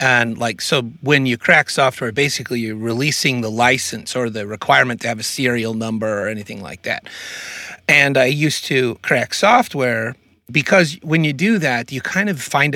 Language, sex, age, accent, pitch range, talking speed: English, male, 30-49, American, 115-145 Hz, 185 wpm